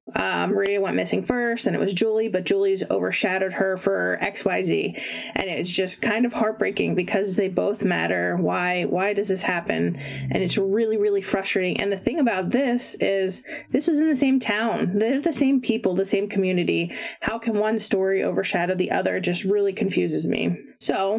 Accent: American